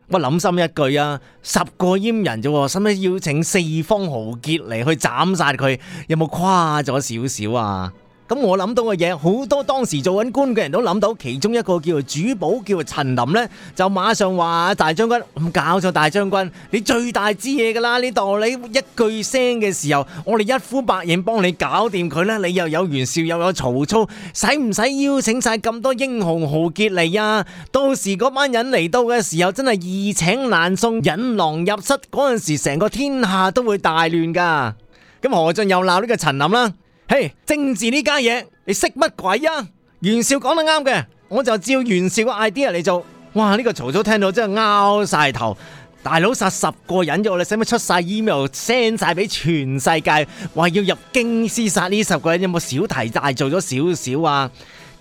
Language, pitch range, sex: Chinese, 165-225 Hz, male